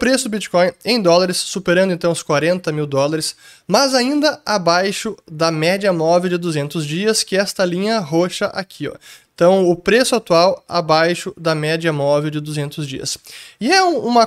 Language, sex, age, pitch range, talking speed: Portuguese, male, 20-39, 160-200 Hz, 170 wpm